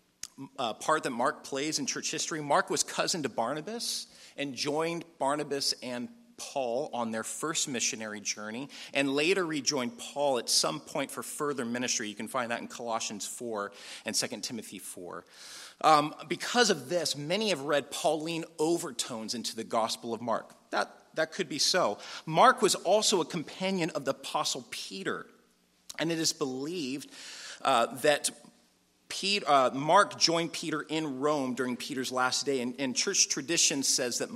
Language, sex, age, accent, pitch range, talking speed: English, male, 40-59, American, 120-165 Hz, 165 wpm